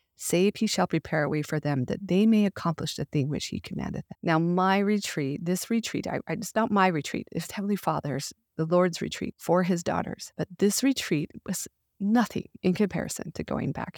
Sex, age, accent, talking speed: female, 40-59, American, 205 wpm